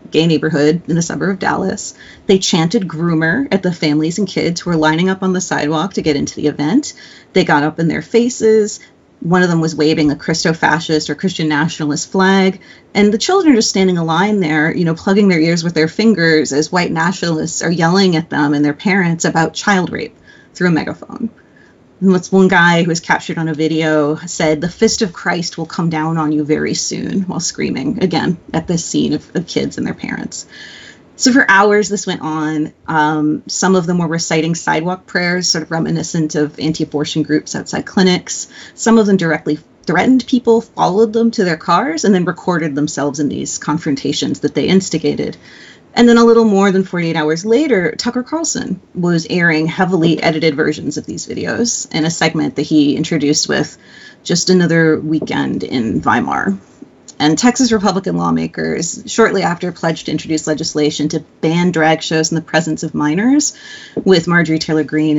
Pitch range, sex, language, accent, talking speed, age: 155-195 Hz, female, English, American, 190 wpm, 30-49